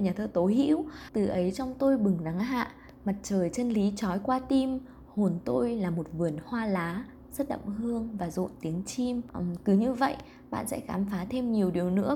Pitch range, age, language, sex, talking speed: 180-245 Hz, 20-39, Vietnamese, female, 210 wpm